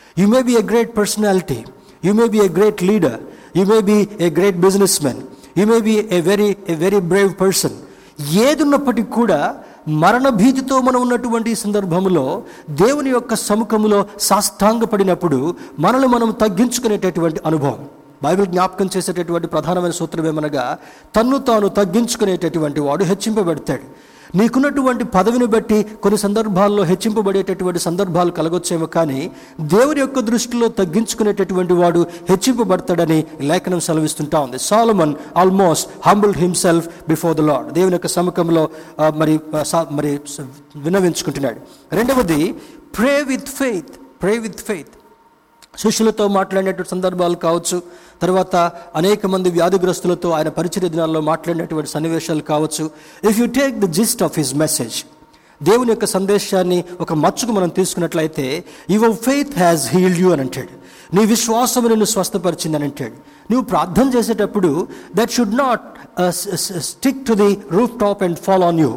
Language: Telugu